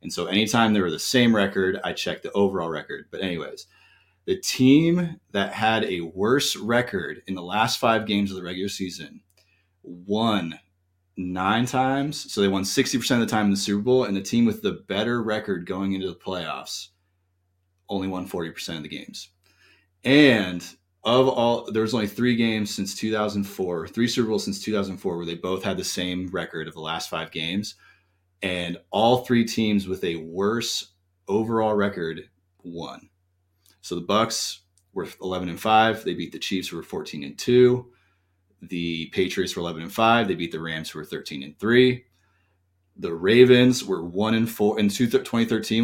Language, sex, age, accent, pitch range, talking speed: English, male, 30-49, American, 90-115 Hz, 180 wpm